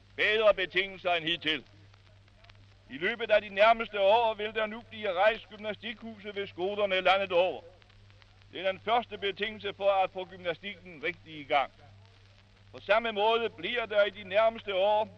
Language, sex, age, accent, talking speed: Danish, male, 60-79, German, 160 wpm